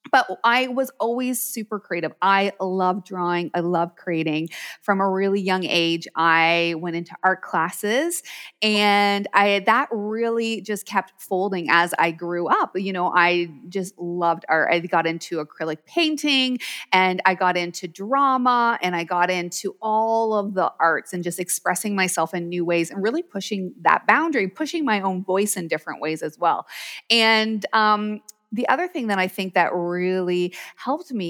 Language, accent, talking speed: English, American, 175 wpm